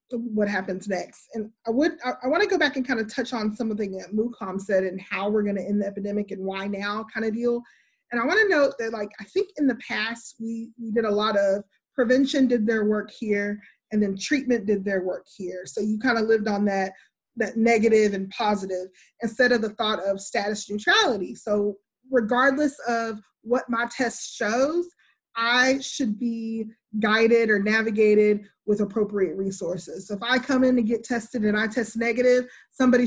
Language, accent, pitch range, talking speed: English, American, 205-245 Hz, 205 wpm